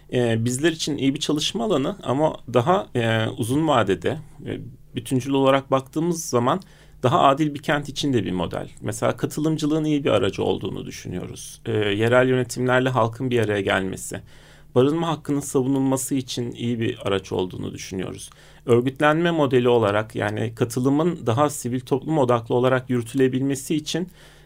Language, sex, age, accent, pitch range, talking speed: Turkish, male, 40-59, native, 115-145 Hz, 135 wpm